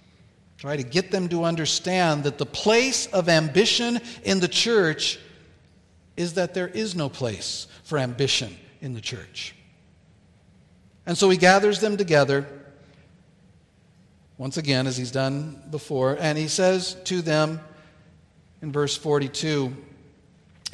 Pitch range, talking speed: 140-185 Hz, 130 wpm